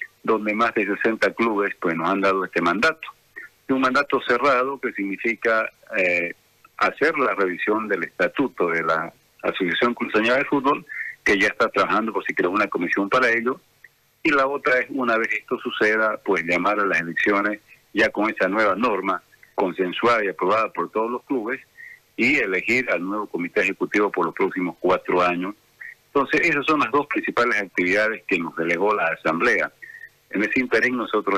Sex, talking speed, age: male, 180 wpm, 50-69